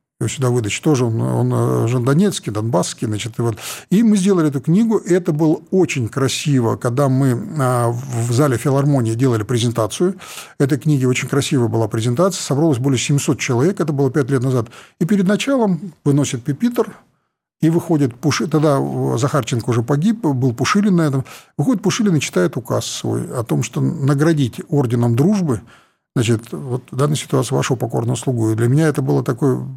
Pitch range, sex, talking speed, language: 125-160 Hz, male, 170 wpm, Russian